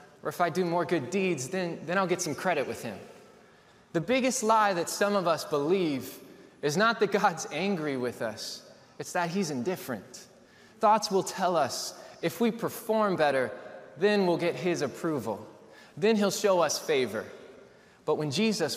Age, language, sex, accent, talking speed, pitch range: 20-39, English, male, American, 175 wpm, 155-210 Hz